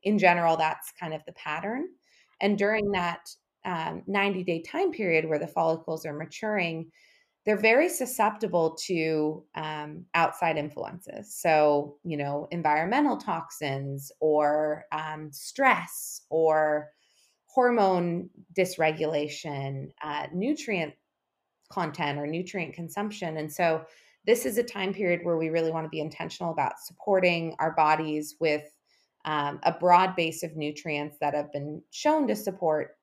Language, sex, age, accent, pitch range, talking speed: English, female, 30-49, American, 155-195 Hz, 135 wpm